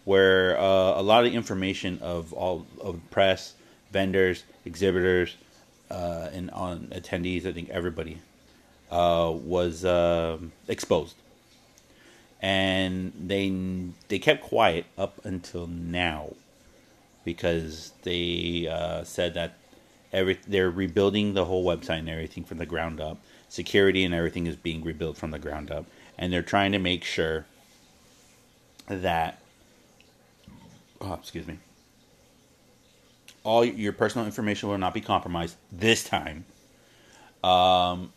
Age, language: 30-49, English